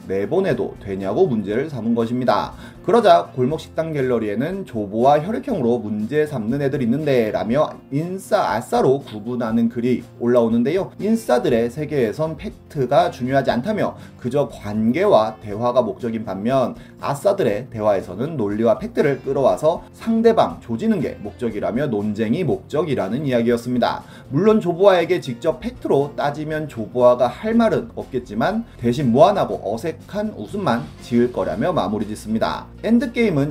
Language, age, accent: Korean, 30-49, native